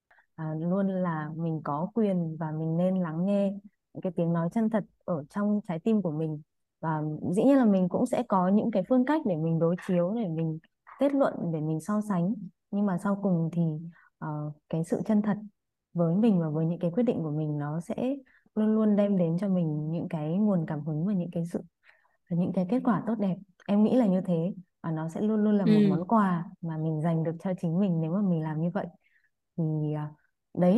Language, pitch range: Vietnamese, 165-210 Hz